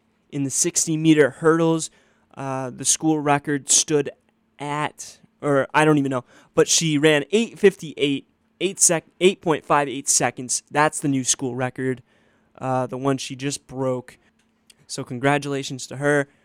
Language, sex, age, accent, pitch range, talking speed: English, male, 20-39, American, 130-150 Hz, 130 wpm